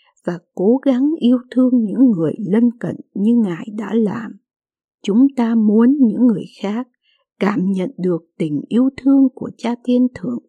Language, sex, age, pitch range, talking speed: Vietnamese, female, 60-79, 200-250 Hz, 165 wpm